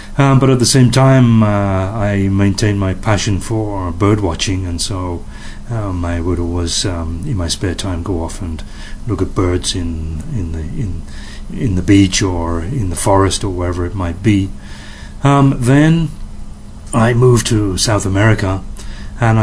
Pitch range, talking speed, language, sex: 90-110 Hz, 170 wpm, English, male